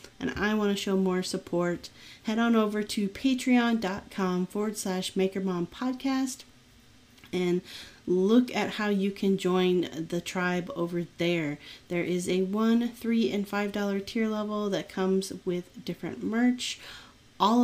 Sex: female